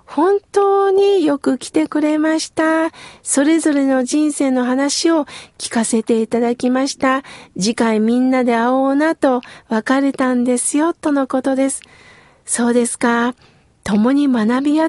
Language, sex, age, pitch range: Japanese, female, 40-59, 240-310 Hz